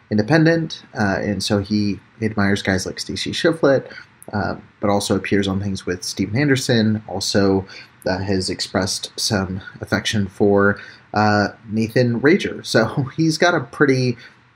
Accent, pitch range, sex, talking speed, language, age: American, 100-120 Hz, male, 145 wpm, English, 30-49